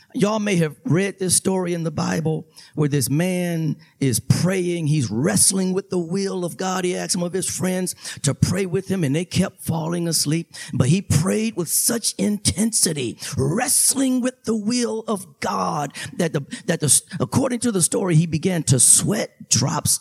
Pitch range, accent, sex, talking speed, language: 135-215 Hz, American, male, 185 wpm, English